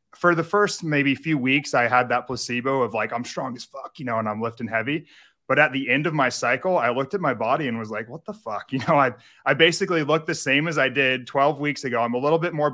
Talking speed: 280 wpm